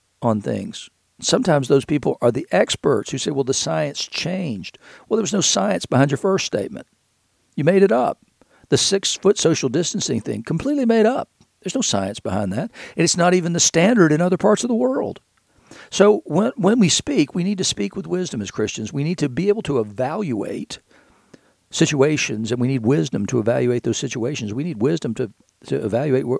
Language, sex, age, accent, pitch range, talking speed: English, male, 60-79, American, 115-160 Hz, 200 wpm